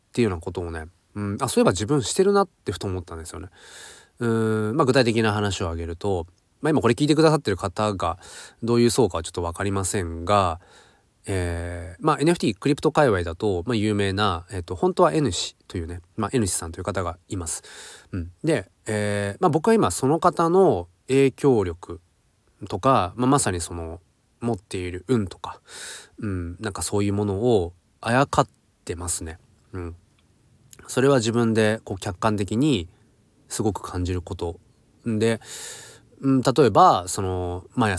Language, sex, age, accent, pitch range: Japanese, male, 20-39, native, 90-120 Hz